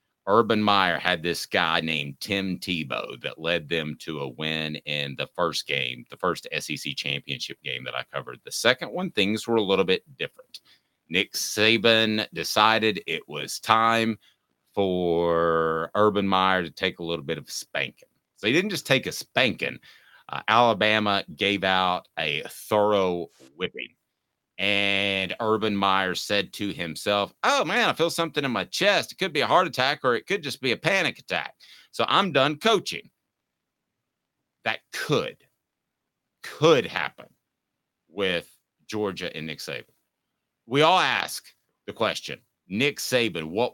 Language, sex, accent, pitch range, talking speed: English, male, American, 85-110 Hz, 155 wpm